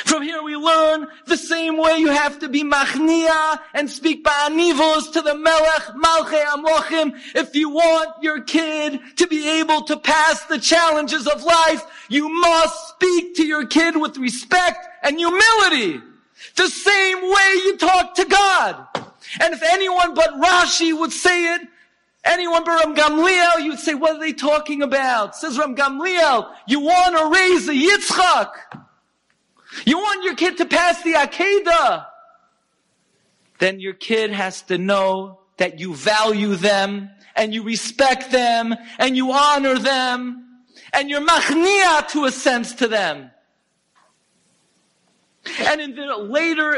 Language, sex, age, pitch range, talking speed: English, male, 40-59, 245-330 Hz, 150 wpm